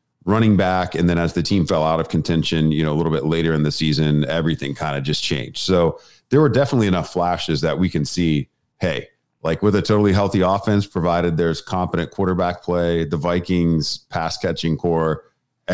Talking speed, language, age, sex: 200 wpm, English, 40-59, male